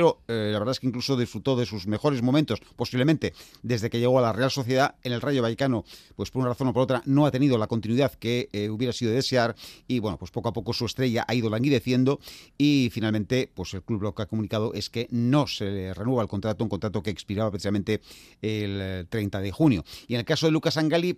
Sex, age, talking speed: male, 40-59, 245 wpm